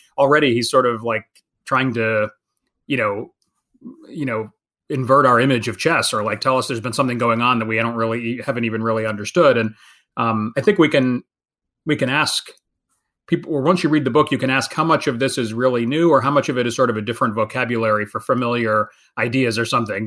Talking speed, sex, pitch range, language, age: 225 wpm, male, 120-155 Hz, English, 30-49